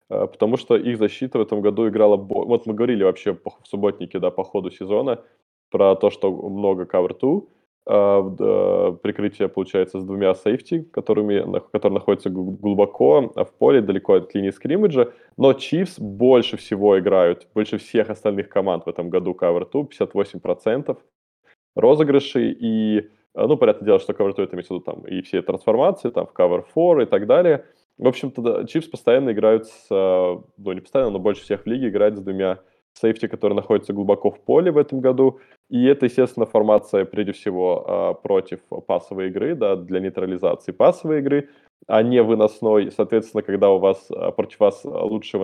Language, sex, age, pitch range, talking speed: Russian, male, 20-39, 100-155 Hz, 160 wpm